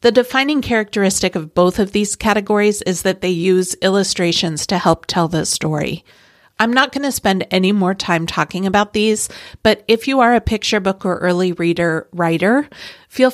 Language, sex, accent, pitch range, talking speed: English, female, American, 170-205 Hz, 185 wpm